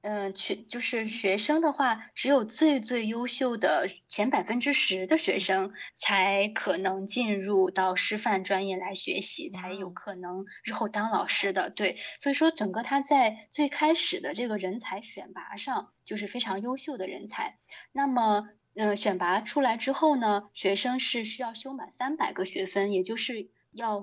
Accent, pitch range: native, 200-265 Hz